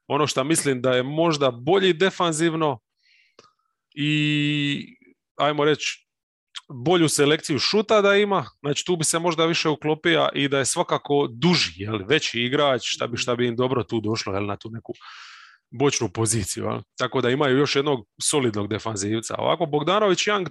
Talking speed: 160 wpm